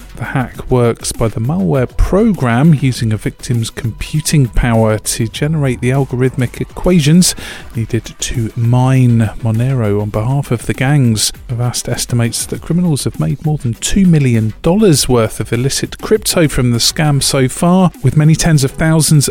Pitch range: 120-155 Hz